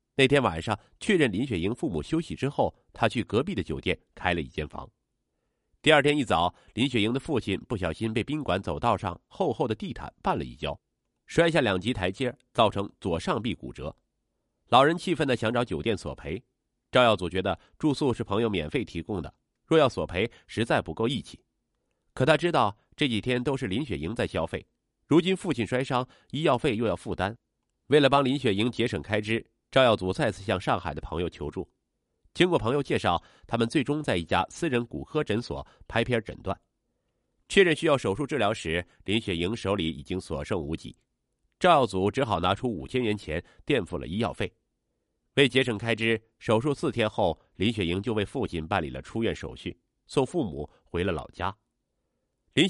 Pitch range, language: 90-130 Hz, Chinese